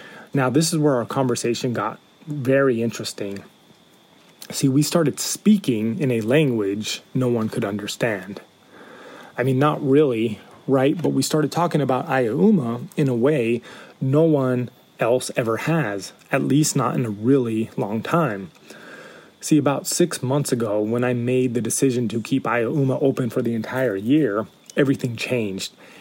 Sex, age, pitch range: male, 30-49, 120-145 Hz